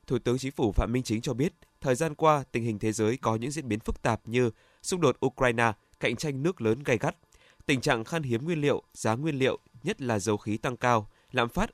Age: 20-39